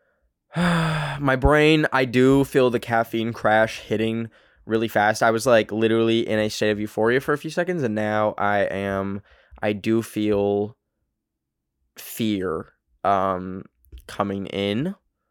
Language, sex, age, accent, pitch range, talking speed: English, male, 10-29, American, 105-125 Hz, 135 wpm